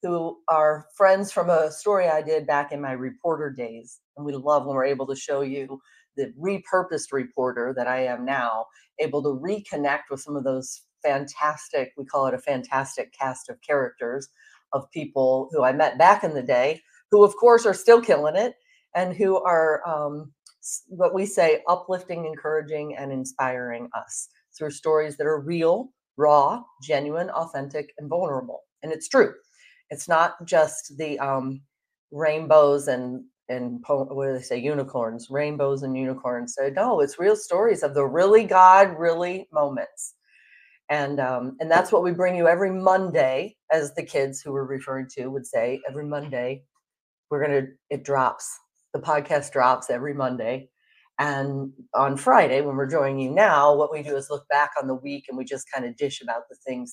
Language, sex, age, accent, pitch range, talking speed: English, female, 40-59, American, 135-165 Hz, 180 wpm